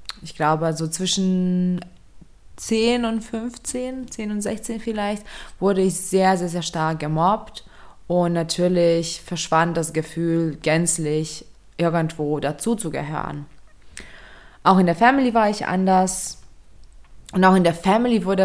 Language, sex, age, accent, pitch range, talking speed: German, female, 20-39, German, 165-215 Hz, 125 wpm